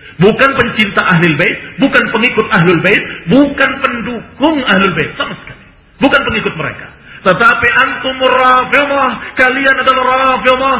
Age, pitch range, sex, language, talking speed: 40-59, 170-255 Hz, male, Indonesian, 115 wpm